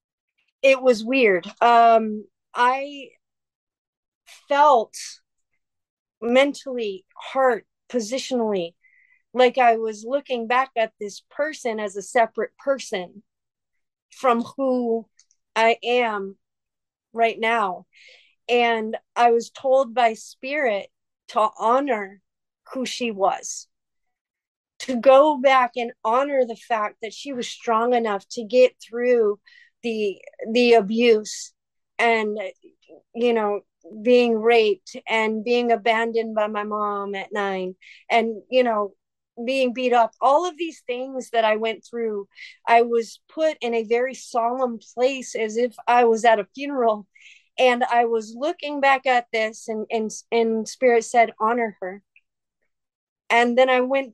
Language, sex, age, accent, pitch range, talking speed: English, female, 40-59, American, 220-255 Hz, 130 wpm